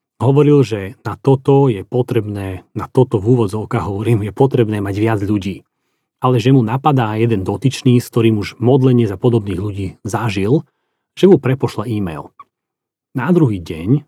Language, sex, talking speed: Slovak, male, 155 wpm